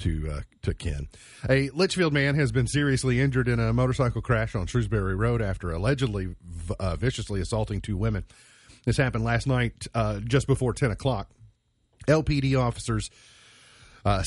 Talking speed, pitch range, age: 160 wpm, 95-125 Hz, 40-59